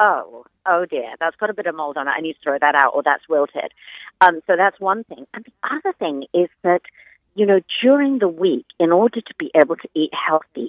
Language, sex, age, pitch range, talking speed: English, female, 50-69, 145-210 Hz, 245 wpm